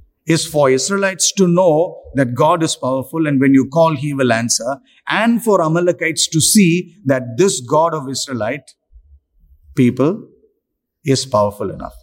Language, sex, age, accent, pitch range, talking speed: English, male, 50-69, Indian, 115-160 Hz, 150 wpm